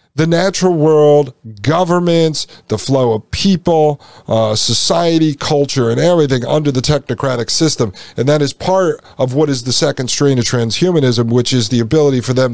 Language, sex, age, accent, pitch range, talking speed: English, male, 50-69, American, 125-160 Hz, 165 wpm